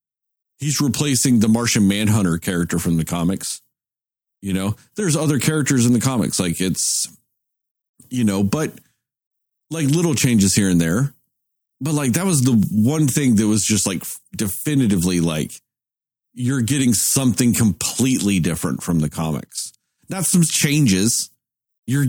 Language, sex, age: English, male, 40-59